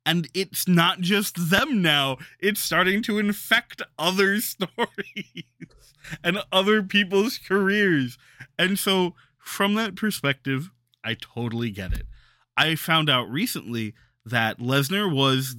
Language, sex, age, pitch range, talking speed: English, male, 20-39, 120-165 Hz, 125 wpm